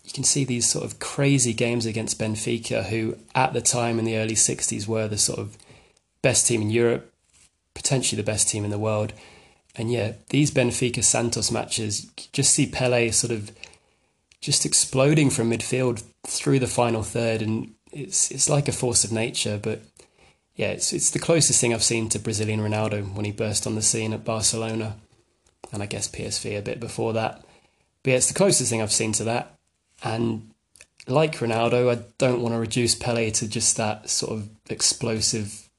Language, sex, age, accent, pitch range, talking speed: English, male, 20-39, British, 110-125 Hz, 190 wpm